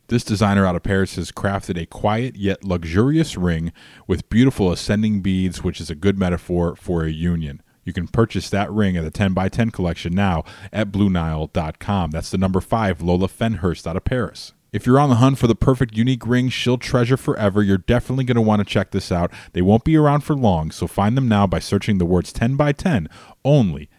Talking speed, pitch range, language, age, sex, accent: 210 wpm, 90-110 Hz, English, 30-49, male, American